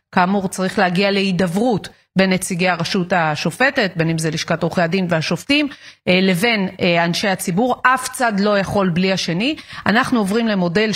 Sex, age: female, 30-49